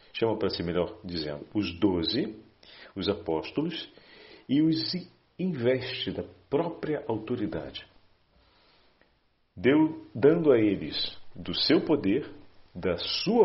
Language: Portuguese